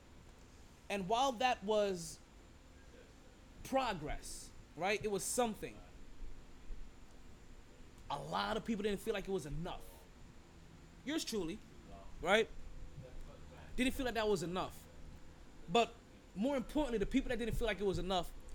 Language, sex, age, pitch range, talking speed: English, male, 20-39, 175-235 Hz, 130 wpm